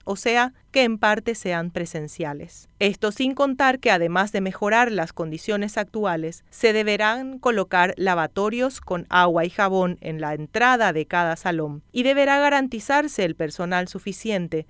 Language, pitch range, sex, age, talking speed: Spanish, 170-235 Hz, female, 30-49, 150 wpm